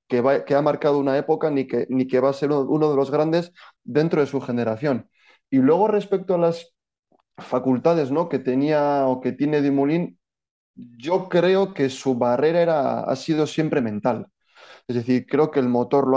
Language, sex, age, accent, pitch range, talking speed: Spanish, male, 20-39, Spanish, 120-150 Hz, 195 wpm